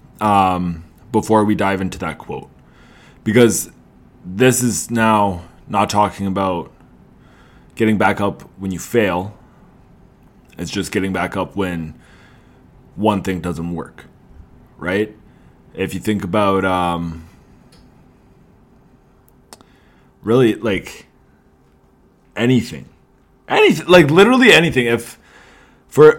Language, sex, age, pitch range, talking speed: English, male, 20-39, 90-125 Hz, 110 wpm